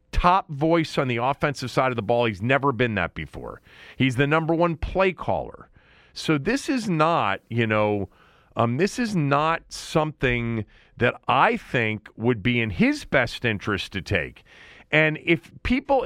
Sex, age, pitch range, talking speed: male, 40-59, 130-205 Hz, 170 wpm